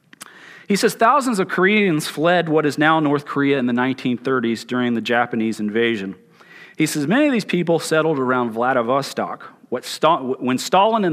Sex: male